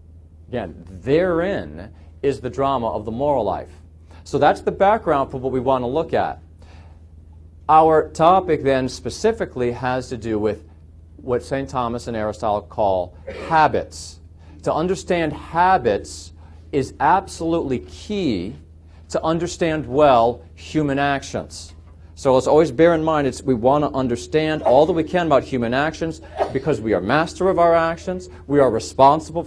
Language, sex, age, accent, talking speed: English, male, 40-59, American, 150 wpm